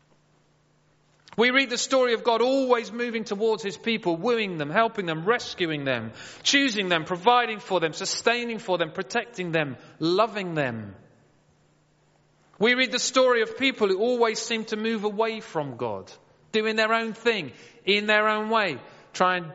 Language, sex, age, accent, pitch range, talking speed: English, male, 40-59, British, 180-250 Hz, 160 wpm